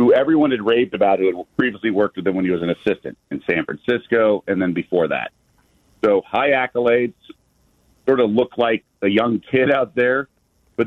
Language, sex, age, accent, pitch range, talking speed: English, male, 40-59, American, 100-130 Hz, 200 wpm